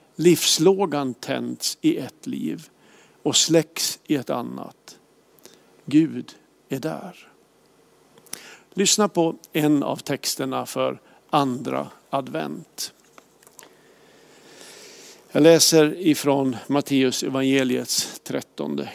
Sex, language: male, Swedish